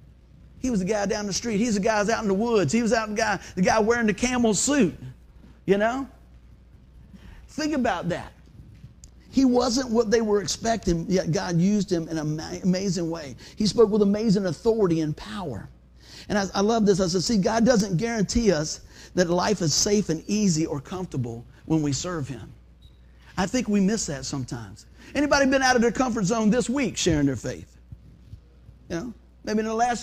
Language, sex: English, male